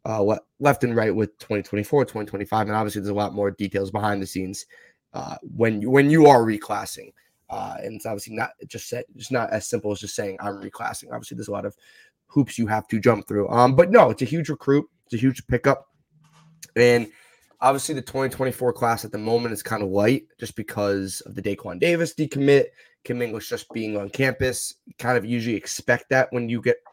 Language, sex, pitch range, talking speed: English, male, 105-130 Hz, 215 wpm